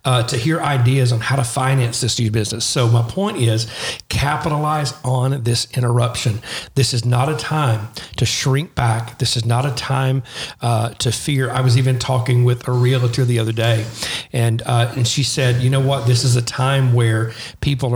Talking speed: 195 wpm